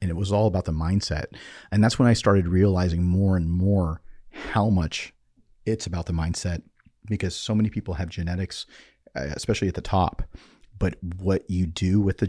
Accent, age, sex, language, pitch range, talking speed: American, 40-59, male, English, 85-100 Hz, 185 wpm